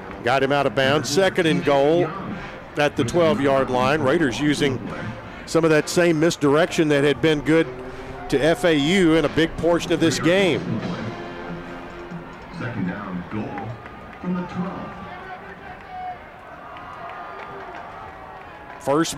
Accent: American